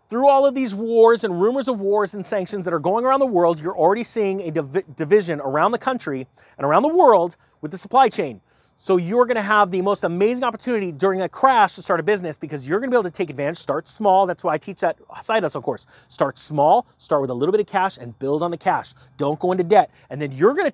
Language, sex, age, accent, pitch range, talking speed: English, male, 30-49, American, 160-215 Hz, 255 wpm